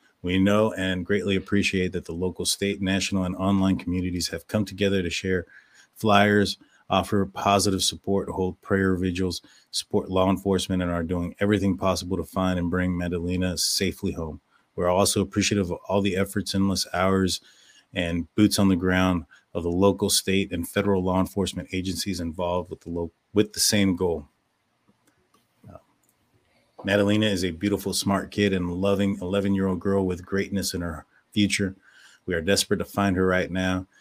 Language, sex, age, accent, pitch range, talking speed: English, male, 30-49, American, 90-100 Hz, 165 wpm